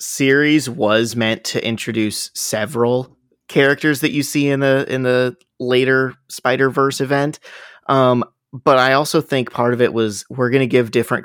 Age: 30-49